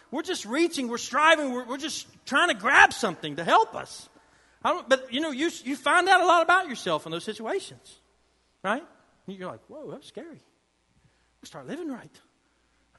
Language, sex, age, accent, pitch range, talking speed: English, male, 40-59, American, 155-250 Hz, 200 wpm